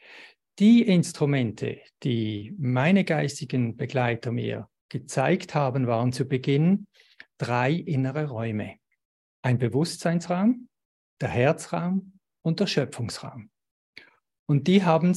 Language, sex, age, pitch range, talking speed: German, male, 50-69, 120-165 Hz, 100 wpm